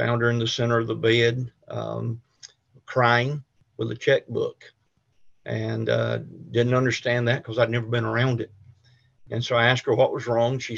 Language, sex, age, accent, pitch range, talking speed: English, male, 50-69, American, 115-130 Hz, 185 wpm